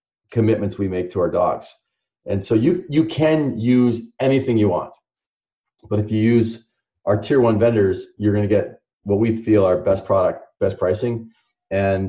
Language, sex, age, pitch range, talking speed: English, male, 30-49, 95-115 Hz, 180 wpm